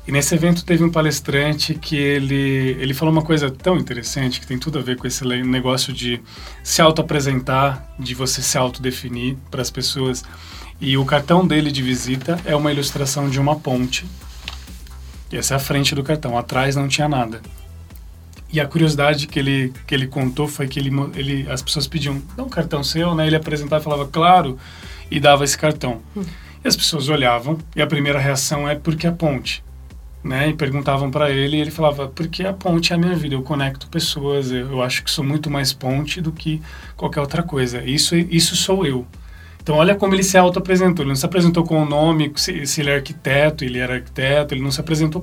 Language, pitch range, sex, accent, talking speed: Portuguese, 130-160 Hz, male, Brazilian, 205 wpm